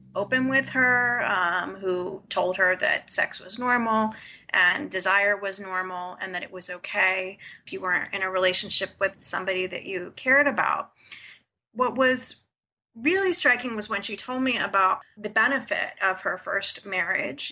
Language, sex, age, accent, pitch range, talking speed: English, female, 30-49, American, 190-250 Hz, 165 wpm